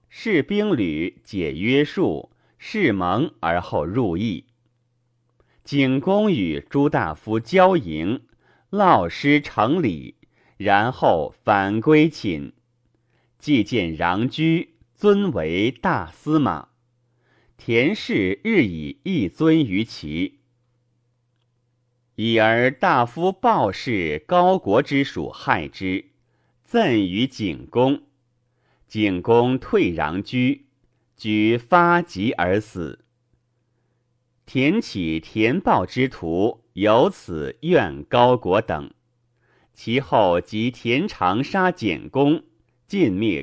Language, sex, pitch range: Chinese, male, 115-150 Hz